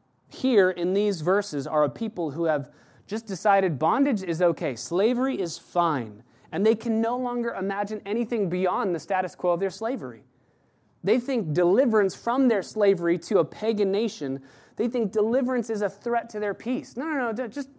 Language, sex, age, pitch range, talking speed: English, male, 30-49, 140-205 Hz, 180 wpm